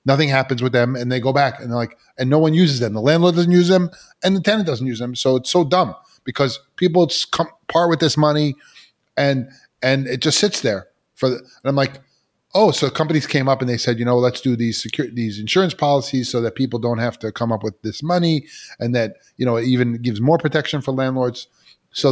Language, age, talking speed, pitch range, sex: English, 30-49, 240 wpm, 115-145 Hz, male